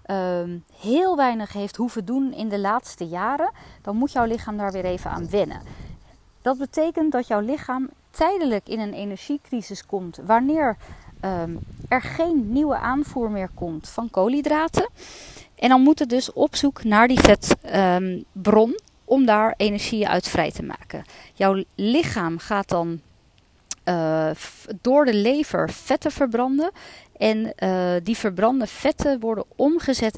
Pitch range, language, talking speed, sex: 195-275 Hz, Dutch, 140 wpm, female